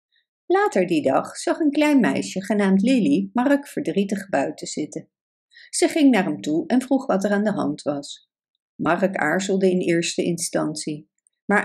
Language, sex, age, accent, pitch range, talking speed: Dutch, female, 60-79, Dutch, 180-285 Hz, 165 wpm